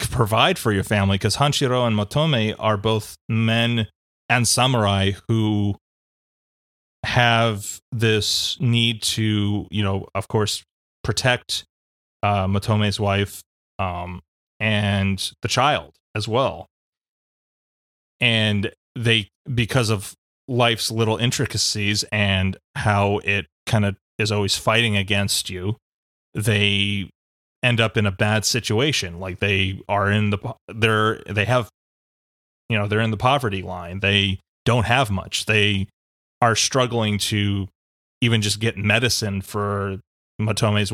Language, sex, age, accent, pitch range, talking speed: English, male, 30-49, American, 95-115 Hz, 125 wpm